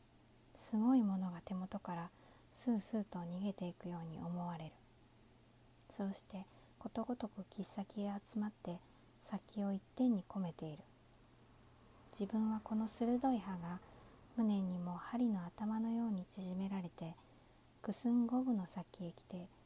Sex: female